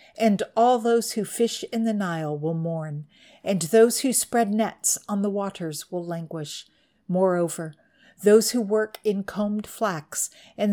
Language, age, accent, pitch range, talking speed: English, 50-69, American, 175-230 Hz, 155 wpm